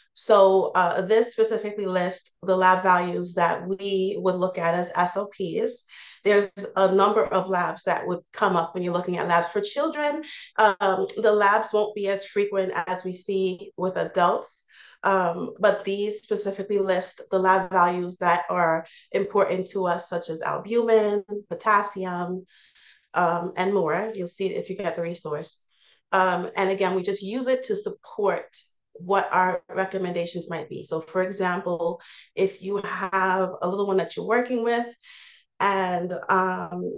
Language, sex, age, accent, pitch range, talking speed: English, female, 30-49, American, 180-205 Hz, 160 wpm